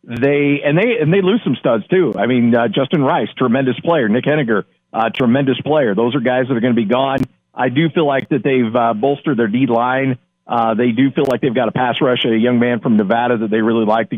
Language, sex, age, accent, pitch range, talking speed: English, male, 50-69, American, 120-145 Hz, 255 wpm